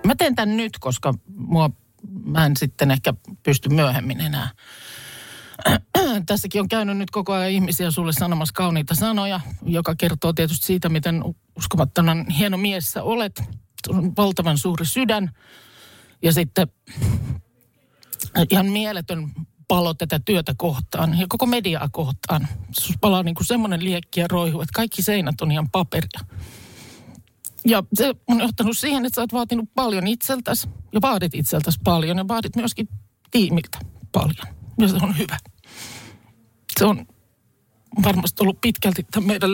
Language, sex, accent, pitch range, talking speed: Finnish, male, native, 140-205 Hz, 145 wpm